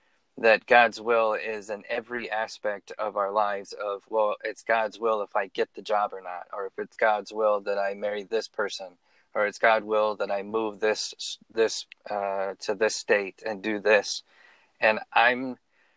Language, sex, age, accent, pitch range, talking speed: English, male, 30-49, American, 100-115 Hz, 190 wpm